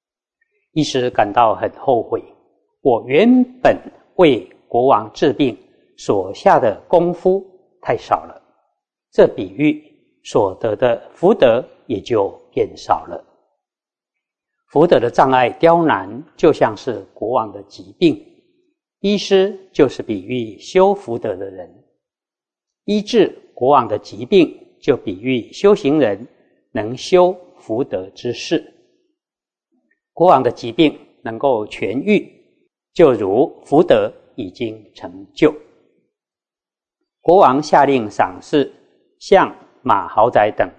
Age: 50-69